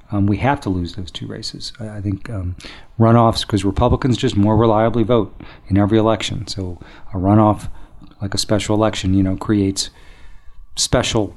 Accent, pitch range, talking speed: American, 95-110 Hz, 170 wpm